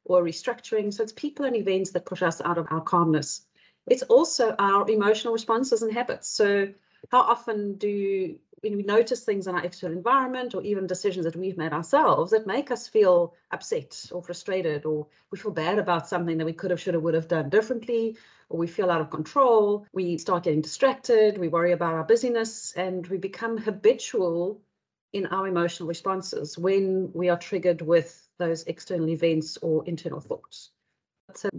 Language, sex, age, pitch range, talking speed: English, female, 40-59, 175-220 Hz, 185 wpm